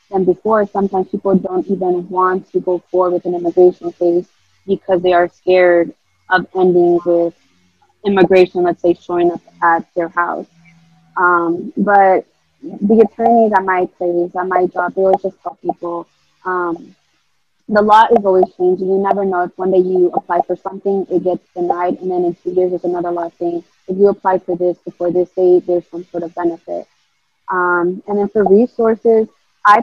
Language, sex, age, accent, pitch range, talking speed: English, female, 20-39, American, 180-205 Hz, 185 wpm